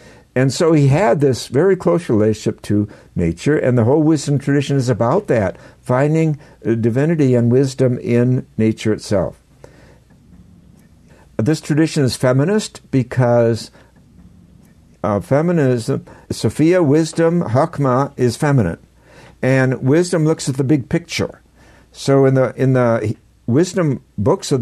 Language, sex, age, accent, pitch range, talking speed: English, male, 60-79, American, 110-145 Hz, 125 wpm